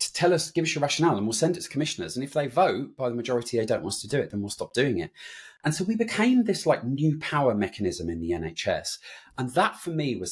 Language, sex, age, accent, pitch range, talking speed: English, male, 30-49, British, 100-135 Hz, 285 wpm